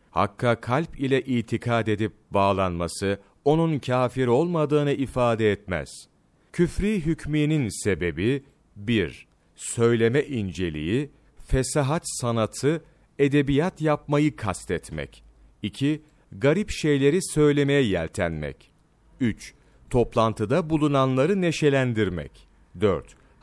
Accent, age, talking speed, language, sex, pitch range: native, 40-59, 80 wpm, Turkish, male, 105-145 Hz